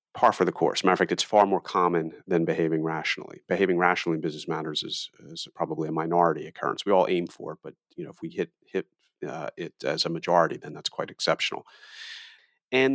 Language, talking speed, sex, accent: English, 220 wpm, male, American